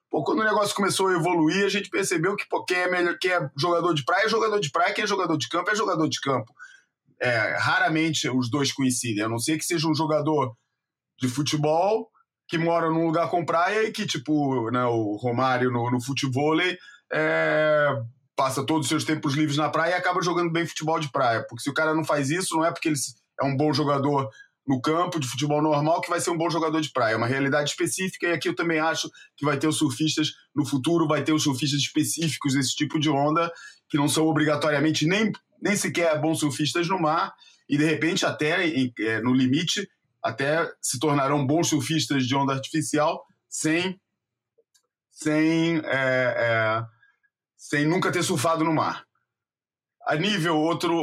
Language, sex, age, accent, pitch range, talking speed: Portuguese, male, 20-39, Brazilian, 140-170 Hz, 200 wpm